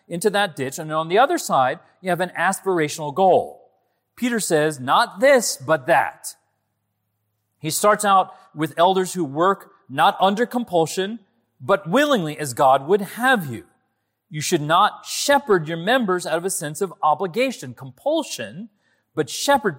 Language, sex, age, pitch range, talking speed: English, male, 40-59, 150-245 Hz, 155 wpm